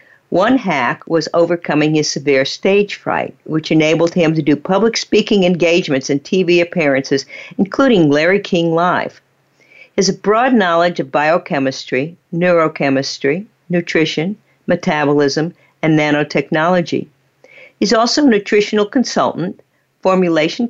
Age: 60-79